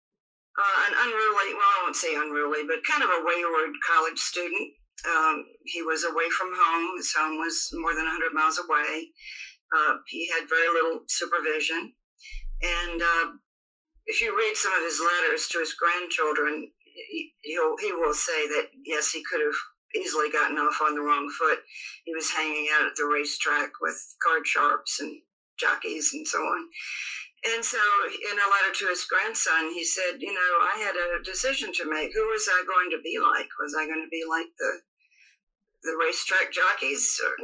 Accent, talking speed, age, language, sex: American, 185 wpm, 50-69, English, female